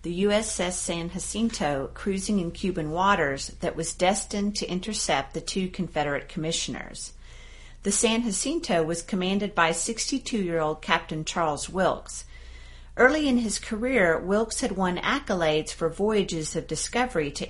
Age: 50-69